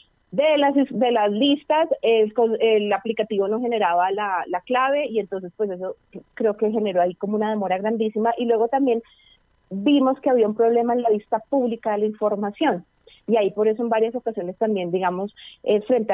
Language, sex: Spanish, female